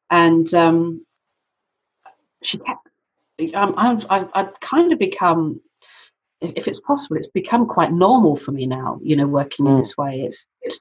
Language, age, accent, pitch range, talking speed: English, 40-59, British, 145-215 Hz, 155 wpm